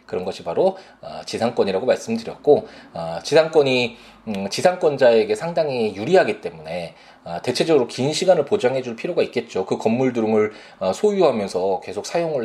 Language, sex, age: Korean, male, 20-39